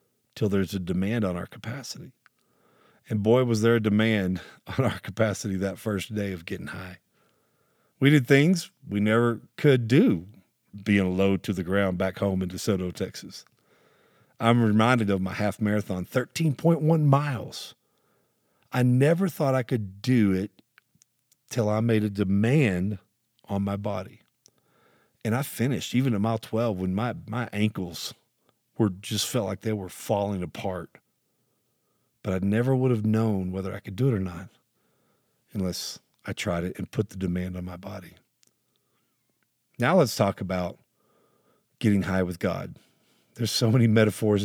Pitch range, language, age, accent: 95-115 Hz, English, 40-59, American